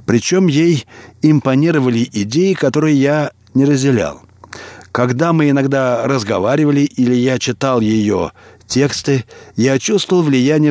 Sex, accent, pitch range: male, native, 115-145 Hz